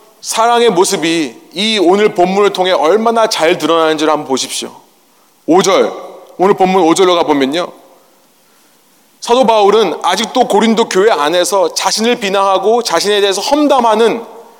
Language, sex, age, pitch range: Korean, male, 30-49, 165-225 Hz